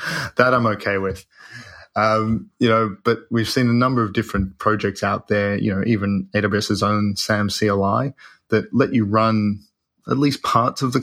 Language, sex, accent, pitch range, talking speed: English, male, Australian, 100-115 Hz, 180 wpm